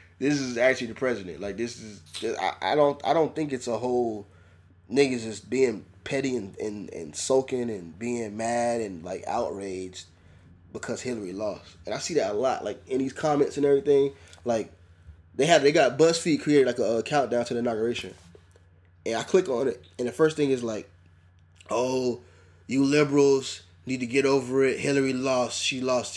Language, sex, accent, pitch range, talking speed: English, male, American, 90-145 Hz, 190 wpm